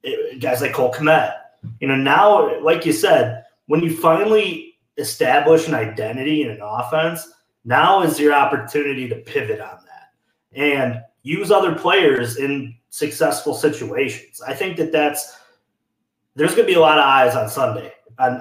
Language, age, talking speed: English, 30-49, 160 wpm